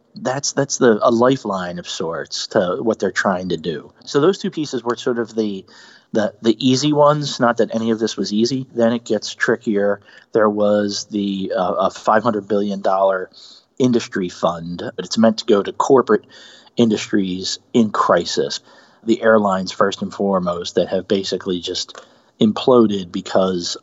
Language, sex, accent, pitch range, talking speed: English, male, American, 100-115 Hz, 170 wpm